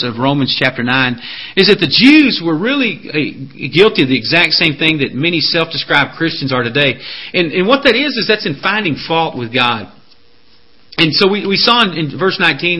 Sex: male